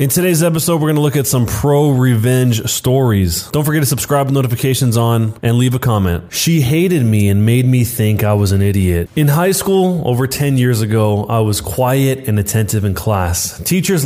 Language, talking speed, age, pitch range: English, 205 wpm, 20-39, 105-140 Hz